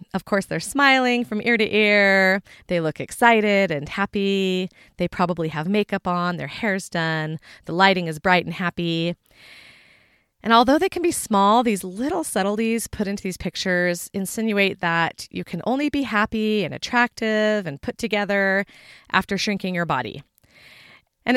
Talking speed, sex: 160 wpm, female